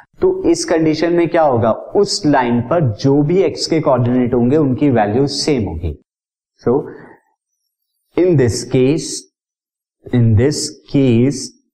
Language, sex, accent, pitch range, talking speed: Hindi, male, native, 120-150 Hz, 135 wpm